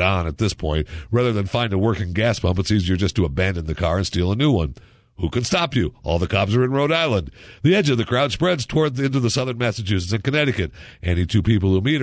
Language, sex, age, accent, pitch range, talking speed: English, male, 50-69, American, 85-120 Hz, 260 wpm